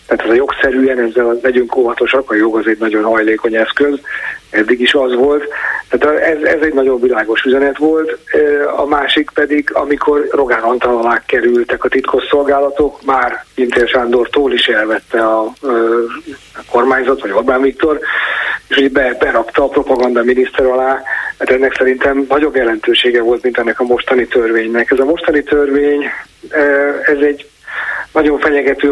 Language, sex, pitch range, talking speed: Hungarian, male, 125-145 Hz, 150 wpm